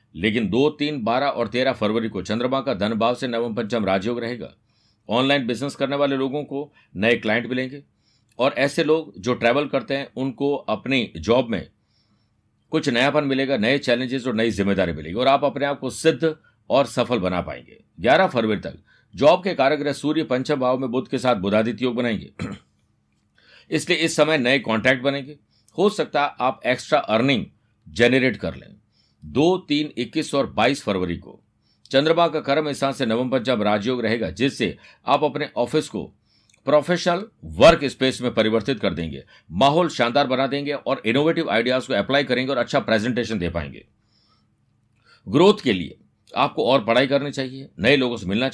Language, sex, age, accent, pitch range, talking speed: Hindi, male, 50-69, native, 115-145 Hz, 175 wpm